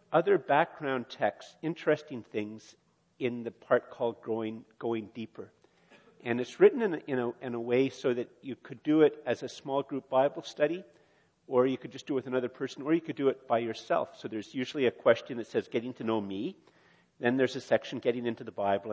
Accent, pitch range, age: American, 115-140 Hz, 50-69